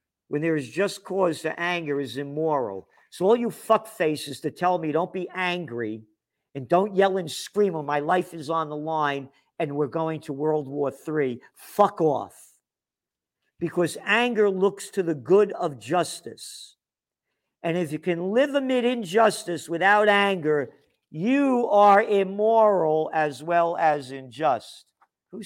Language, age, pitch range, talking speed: English, 50-69, 140-180 Hz, 155 wpm